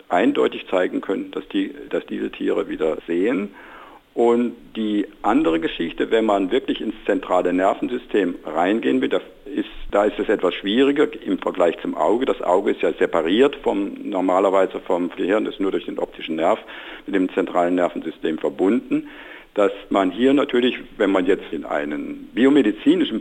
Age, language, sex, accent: 60-79, German, male, German